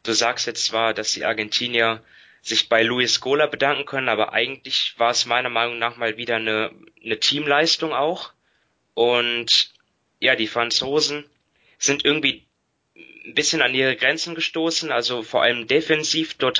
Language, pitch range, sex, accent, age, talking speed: German, 115-145 Hz, male, German, 20-39, 155 wpm